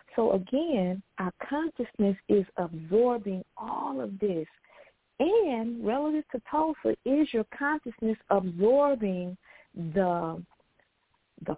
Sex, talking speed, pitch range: female, 100 wpm, 170-225 Hz